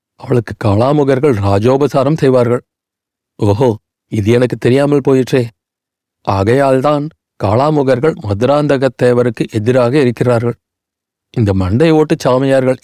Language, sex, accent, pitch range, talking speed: Tamil, male, native, 115-140 Hz, 90 wpm